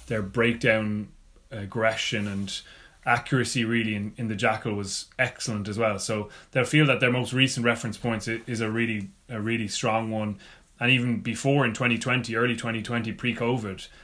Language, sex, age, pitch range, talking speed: English, male, 20-39, 105-120 Hz, 175 wpm